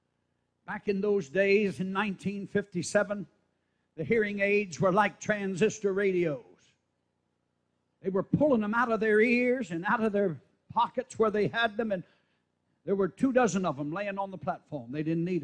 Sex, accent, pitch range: male, American, 175-255 Hz